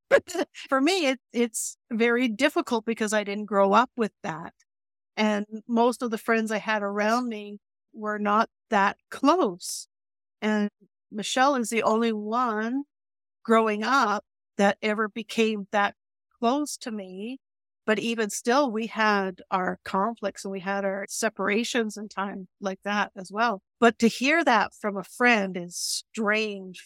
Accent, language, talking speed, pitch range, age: American, English, 150 wpm, 205-245 Hz, 50-69